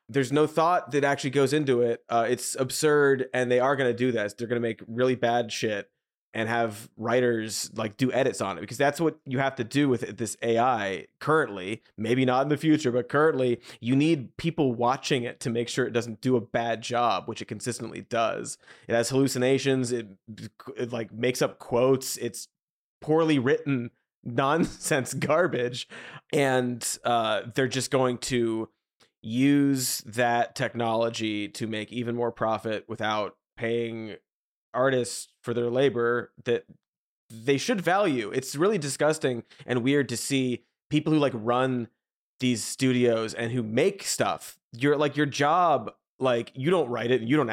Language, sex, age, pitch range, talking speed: English, male, 20-39, 115-140 Hz, 170 wpm